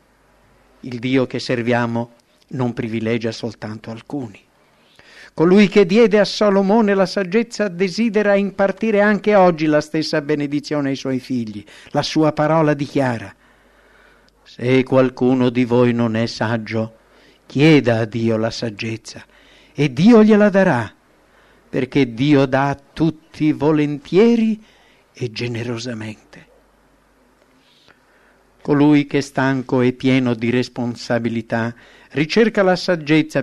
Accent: Italian